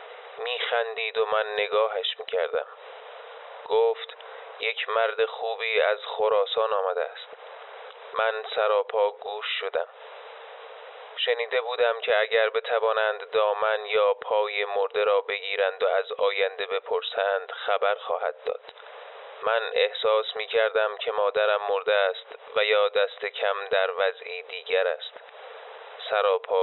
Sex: male